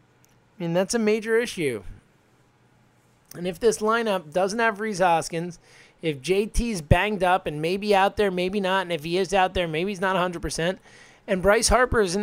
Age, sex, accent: 20-39, male, American